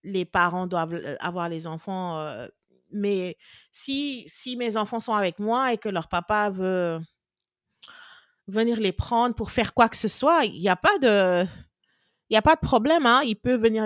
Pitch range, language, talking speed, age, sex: 185-245 Hz, English, 190 wpm, 40-59, female